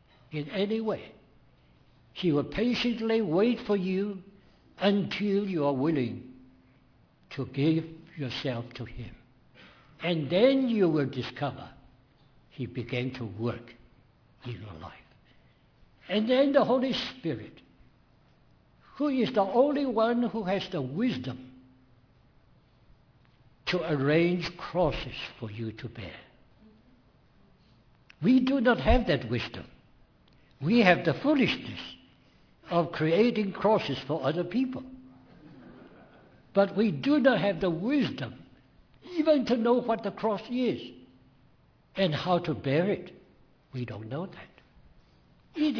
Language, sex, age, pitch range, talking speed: English, male, 60-79, 130-205 Hz, 120 wpm